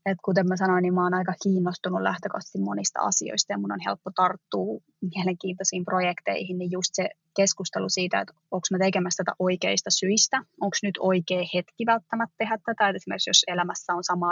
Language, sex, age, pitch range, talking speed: Finnish, female, 20-39, 175-195 Hz, 185 wpm